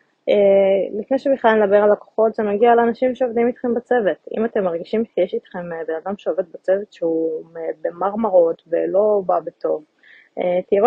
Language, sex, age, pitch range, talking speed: Hebrew, female, 20-39, 185-225 Hz, 165 wpm